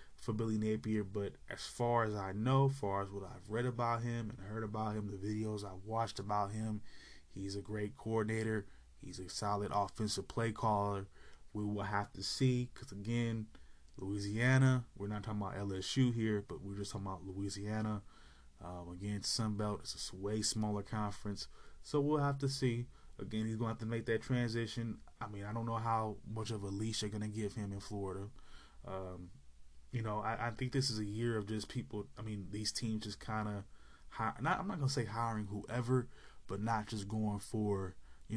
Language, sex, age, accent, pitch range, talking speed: English, male, 20-39, American, 100-120 Hz, 200 wpm